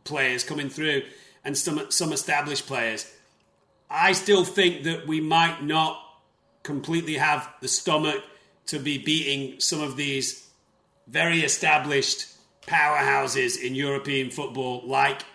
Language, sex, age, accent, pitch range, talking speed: English, male, 40-59, British, 140-170 Hz, 125 wpm